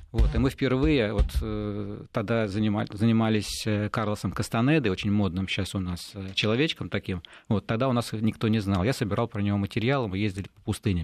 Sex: male